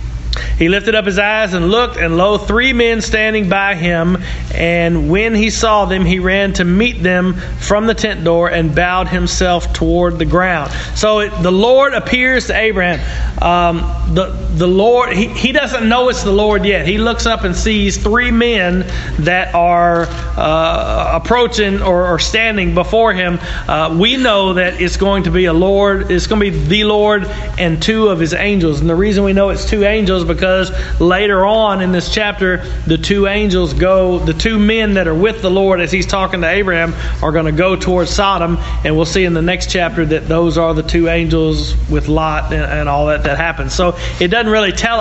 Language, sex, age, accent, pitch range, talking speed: English, male, 40-59, American, 165-210 Hz, 205 wpm